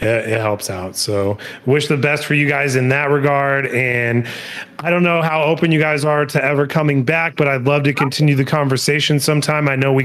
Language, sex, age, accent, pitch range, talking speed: English, male, 30-49, American, 135-155 Hz, 220 wpm